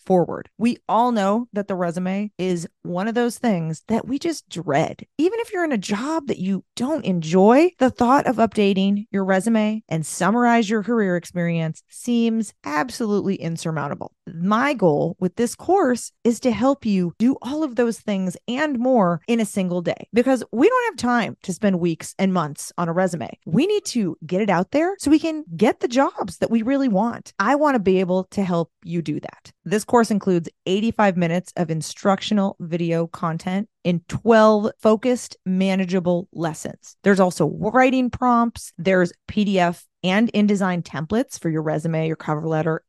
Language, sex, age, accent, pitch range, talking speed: English, female, 30-49, American, 175-235 Hz, 180 wpm